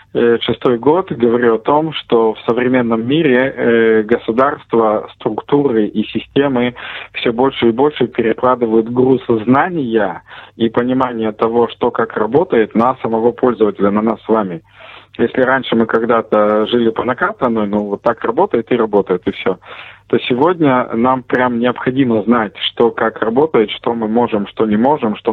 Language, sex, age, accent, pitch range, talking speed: Russian, male, 20-39, native, 110-120 Hz, 155 wpm